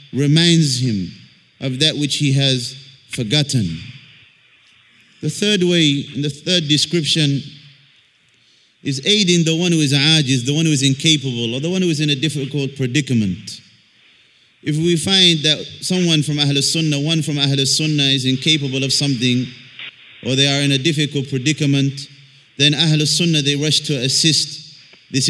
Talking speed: 150 wpm